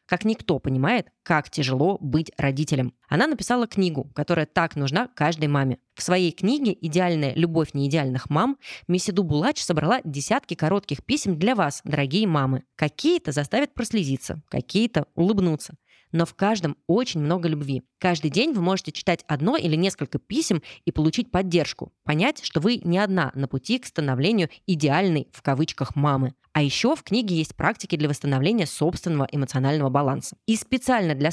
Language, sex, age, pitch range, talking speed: Russian, female, 20-39, 145-200 Hz, 155 wpm